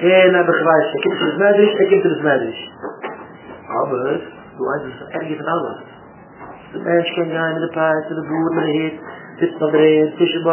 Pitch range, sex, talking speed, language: 170-230 Hz, male, 125 wpm, English